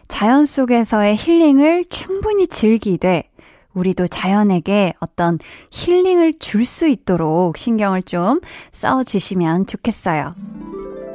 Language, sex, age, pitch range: Korean, female, 20-39, 190-275 Hz